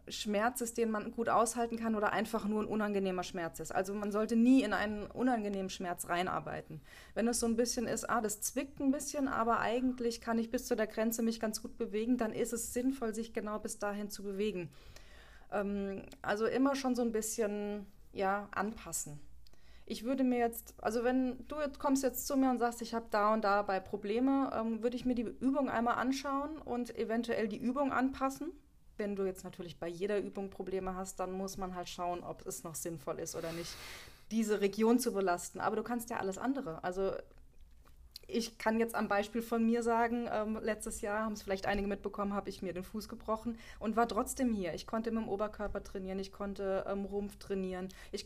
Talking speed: 210 wpm